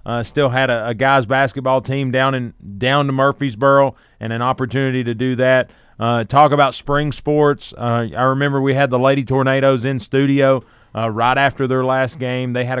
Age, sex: 30-49, male